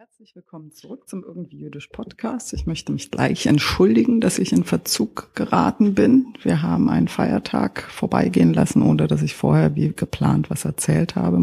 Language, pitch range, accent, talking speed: German, 130-185 Hz, German, 165 wpm